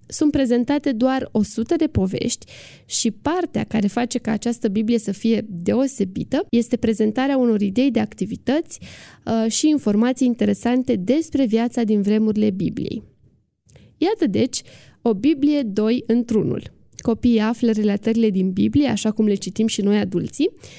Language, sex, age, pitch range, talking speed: Romanian, female, 20-39, 215-275 Hz, 140 wpm